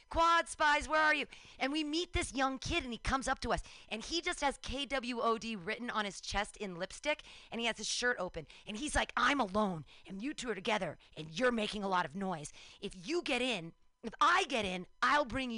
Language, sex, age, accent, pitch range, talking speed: English, female, 30-49, American, 220-300 Hz, 235 wpm